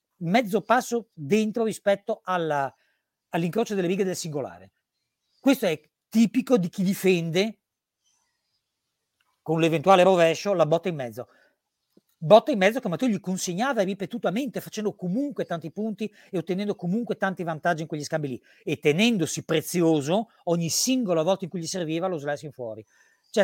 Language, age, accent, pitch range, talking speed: Italian, 40-59, native, 155-205 Hz, 150 wpm